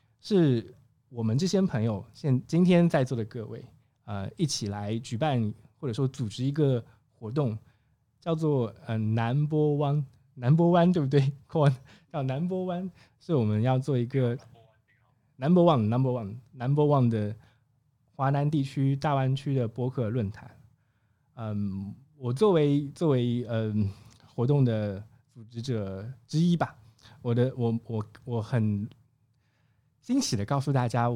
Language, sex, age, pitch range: Chinese, male, 20-39, 115-140 Hz